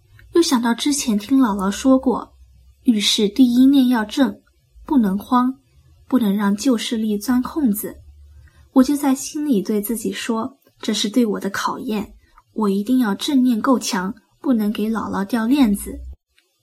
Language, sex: Chinese, female